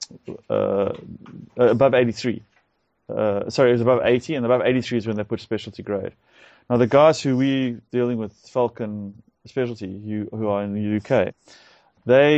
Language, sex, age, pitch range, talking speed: English, male, 30-49, 110-135 Hz, 165 wpm